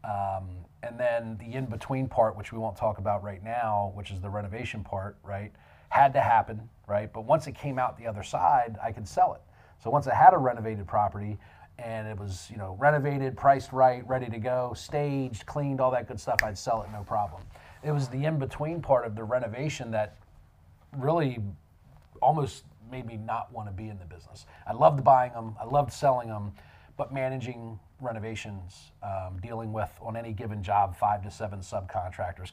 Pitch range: 100-115 Hz